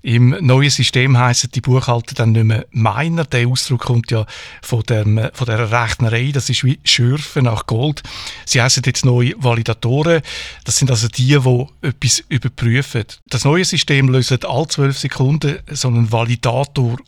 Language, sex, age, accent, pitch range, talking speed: German, male, 60-79, Austrian, 120-140 Hz, 165 wpm